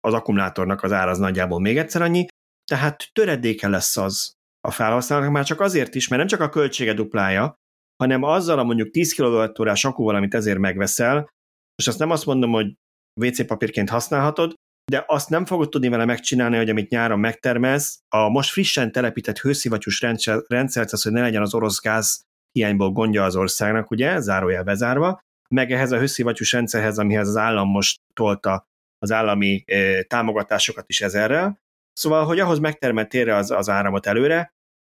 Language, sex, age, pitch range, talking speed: Hungarian, male, 30-49, 100-140 Hz, 170 wpm